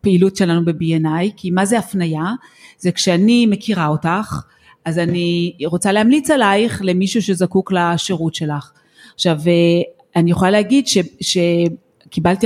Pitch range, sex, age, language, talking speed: 165-220 Hz, female, 30-49, Hebrew, 125 wpm